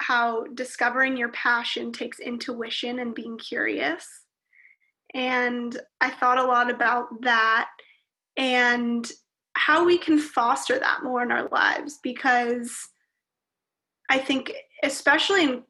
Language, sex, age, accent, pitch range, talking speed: English, female, 20-39, American, 245-290 Hz, 120 wpm